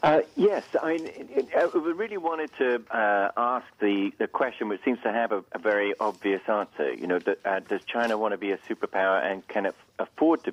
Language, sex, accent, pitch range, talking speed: English, male, British, 100-165 Hz, 205 wpm